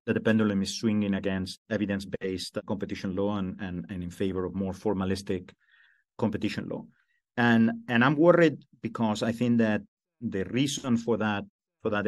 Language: English